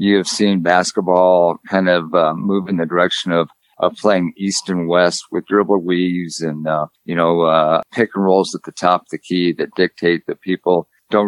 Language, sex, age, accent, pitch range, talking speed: English, male, 50-69, American, 85-95 Hz, 205 wpm